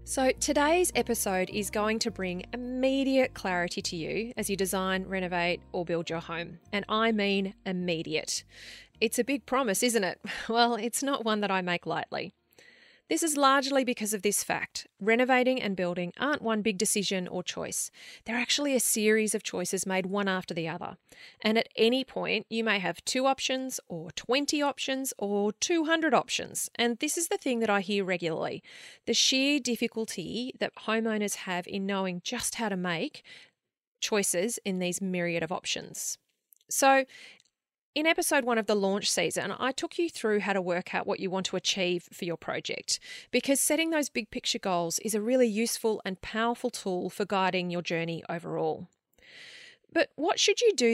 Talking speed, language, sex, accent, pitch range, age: 180 wpm, English, female, Australian, 190-255 Hz, 30-49